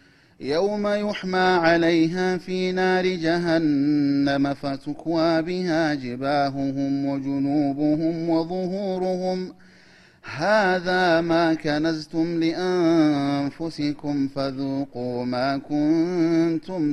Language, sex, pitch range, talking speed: Amharic, male, 140-175 Hz, 65 wpm